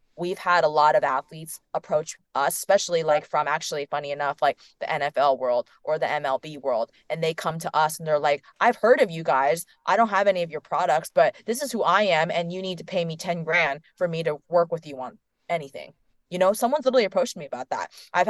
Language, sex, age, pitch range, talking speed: English, female, 20-39, 150-190 Hz, 240 wpm